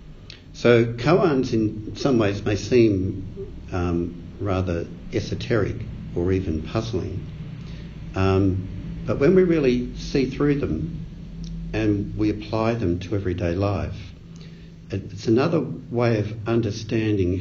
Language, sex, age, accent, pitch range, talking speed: English, male, 60-79, Australian, 85-110 Hz, 115 wpm